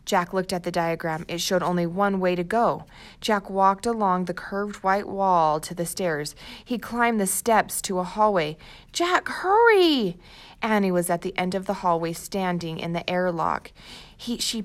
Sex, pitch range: female, 165-195 Hz